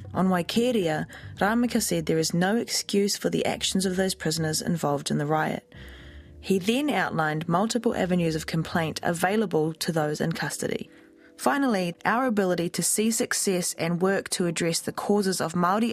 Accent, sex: Australian, female